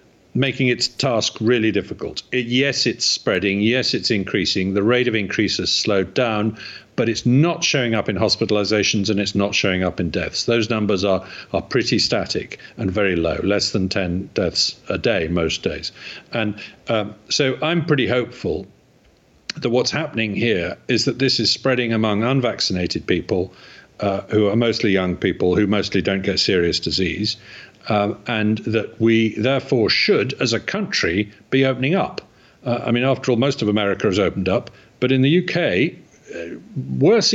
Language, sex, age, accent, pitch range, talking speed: English, male, 50-69, British, 105-135 Hz, 170 wpm